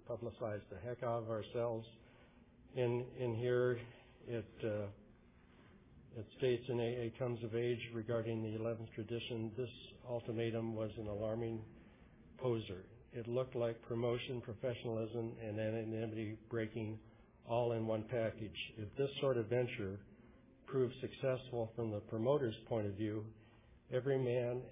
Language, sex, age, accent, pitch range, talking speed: English, male, 60-79, American, 110-120 Hz, 135 wpm